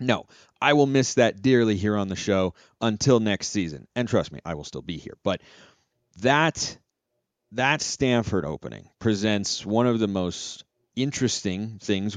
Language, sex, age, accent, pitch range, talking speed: English, male, 30-49, American, 95-130 Hz, 165 wpm